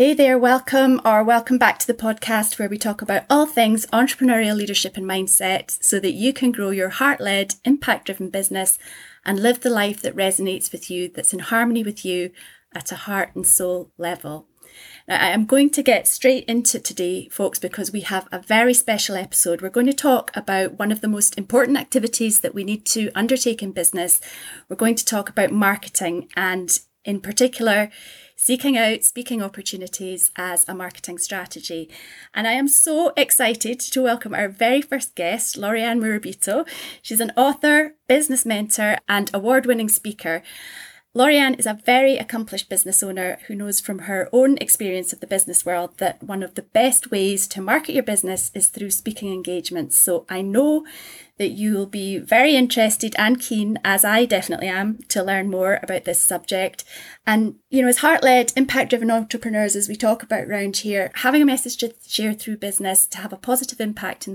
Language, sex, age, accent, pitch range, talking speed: English, female, 30-49, British, 190-245 Hz, 185 wpm